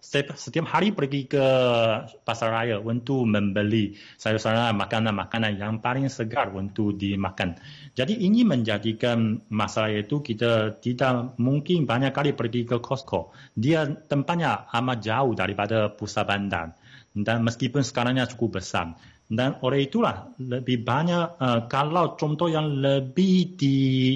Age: 30-49